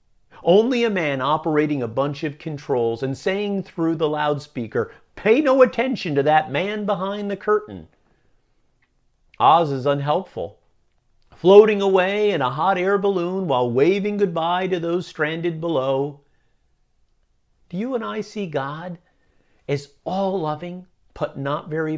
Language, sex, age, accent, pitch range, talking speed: English, male, 50-69, American, 130-180 Hz, 135 wpm